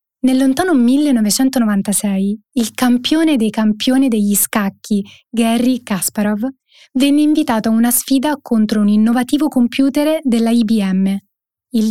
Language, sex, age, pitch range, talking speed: Italian, female, 20-39, 215-275 Hz, 115 wpm